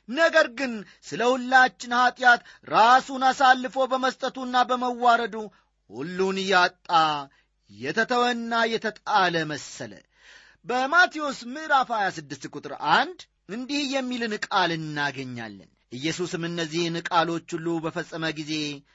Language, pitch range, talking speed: Amharic, 160-230 Hz, 85 wpm